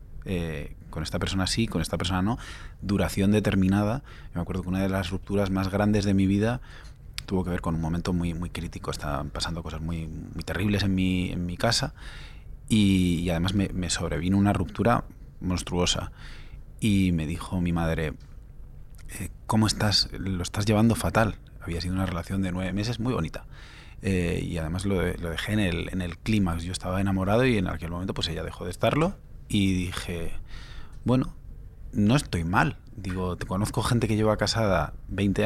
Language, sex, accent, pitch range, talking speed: Spanish, male, Spanish, 90-110 Hz, 190 wpm